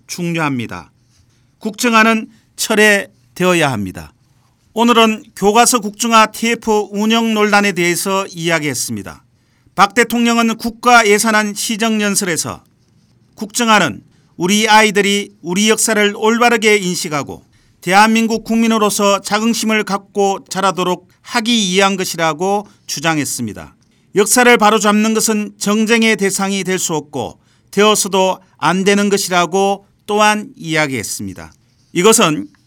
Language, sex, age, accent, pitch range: Korean, male, 40-59, native, 170-220 Hz